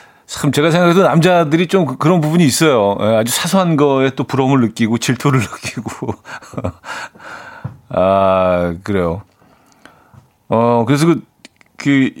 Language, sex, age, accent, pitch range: Korean, male, 40-59, native, 110-160 Hz